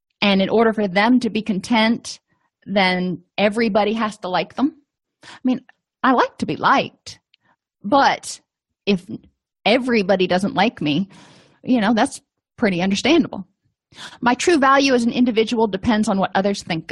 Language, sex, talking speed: English, female, 155 wpm